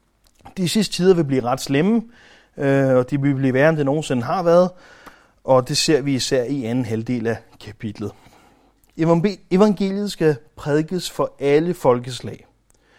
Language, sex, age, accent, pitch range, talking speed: Danish, male, 30-49, native, 125-180 Hz, 150 wpm